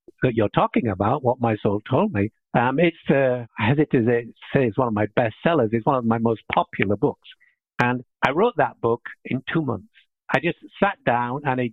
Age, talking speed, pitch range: 60-79, 220 wpm, 125-170 Hz